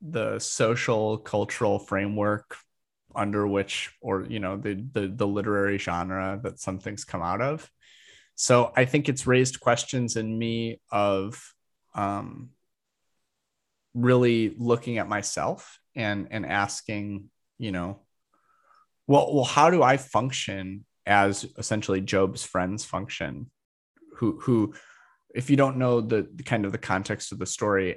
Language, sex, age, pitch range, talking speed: English, male, 30-49, 100-120 Hz, 135 wpm